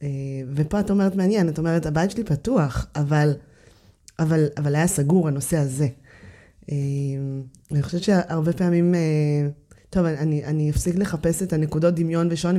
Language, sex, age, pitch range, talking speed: Hebrew, female, 20-39, 145-175 Hz, 155 wpm